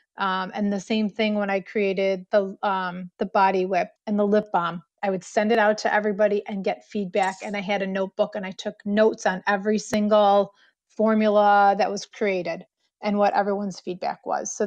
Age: 30-49